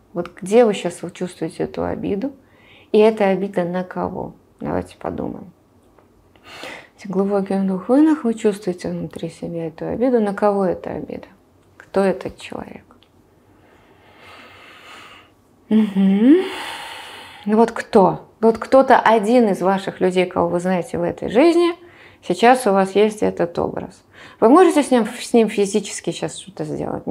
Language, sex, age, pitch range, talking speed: Russian, female, 20-39, 185-235 Hz, 135 wpm